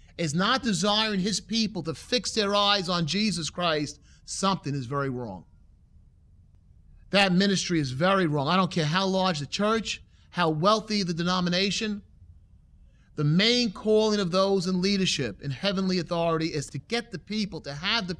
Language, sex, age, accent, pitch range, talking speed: English, male, 30-49, American, 145-205 Hz, 165 wpm